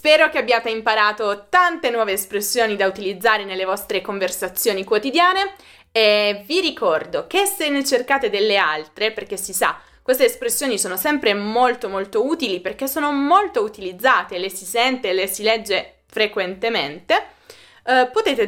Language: Italian